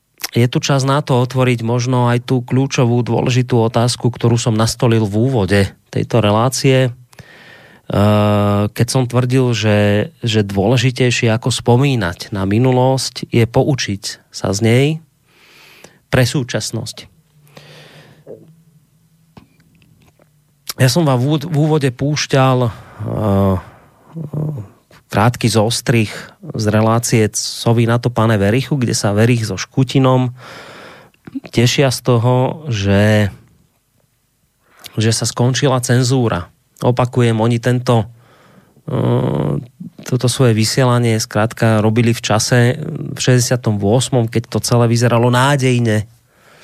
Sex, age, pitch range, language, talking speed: male, 30-49, 110-130 Hz, Slovak, 105 wpm